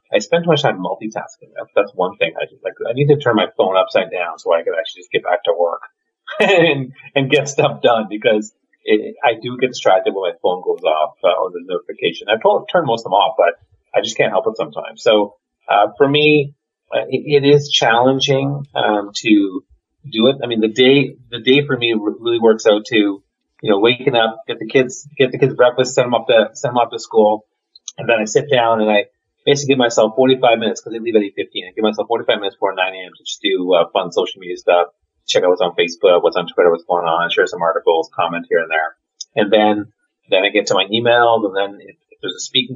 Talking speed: 240 wpm